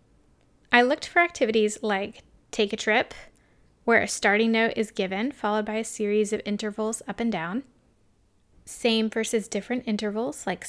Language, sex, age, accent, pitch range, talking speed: English, female, 20-39, American, 195-235 Hz, 155 wpm